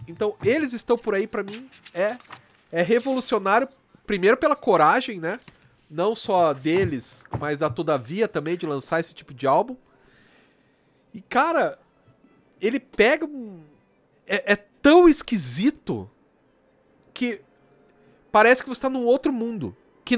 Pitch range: 160-245 Hz